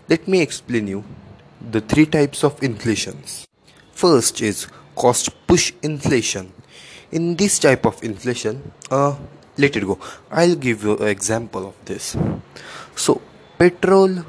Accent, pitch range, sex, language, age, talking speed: Indian, 115-150 Hz, male, English, 20-39, 135 wpm